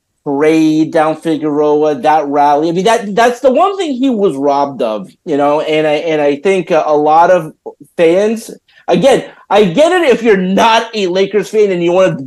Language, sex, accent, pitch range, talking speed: English, male, American, 180-245 Hz, 205 wpm